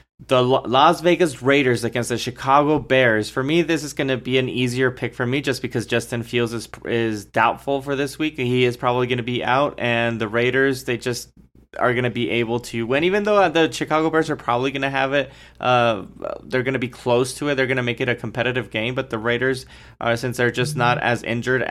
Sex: male